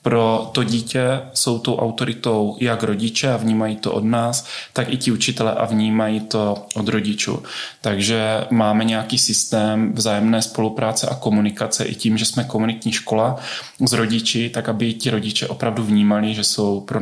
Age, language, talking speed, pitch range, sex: 20-39, Czech, 165 wpm, 105-115 Hz, male